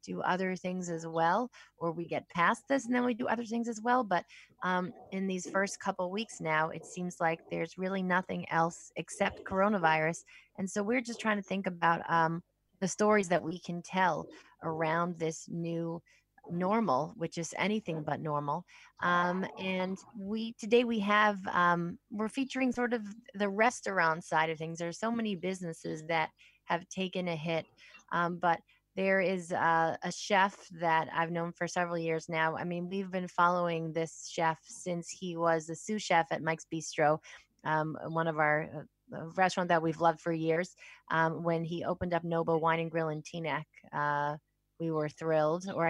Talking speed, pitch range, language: 185 wpm, 160-195 Hz, English